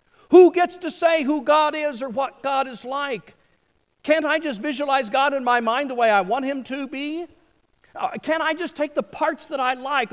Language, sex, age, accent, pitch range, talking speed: English, male, 50-69, American, 245-310 Hz, 215 wpm